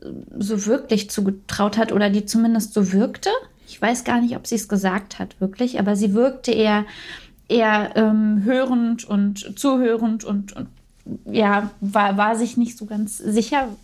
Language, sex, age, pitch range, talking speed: German, female, 20-39, 215-260 Hz, 165 wpm